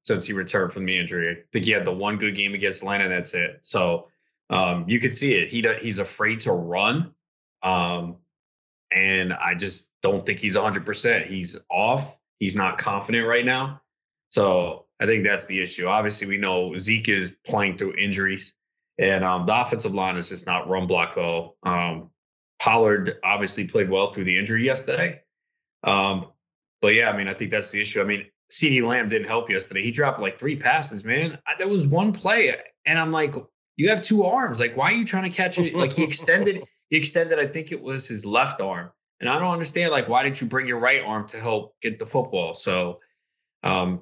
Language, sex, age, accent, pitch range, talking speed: English, male, 20-39, American, 95-135 Hz, 210 wpm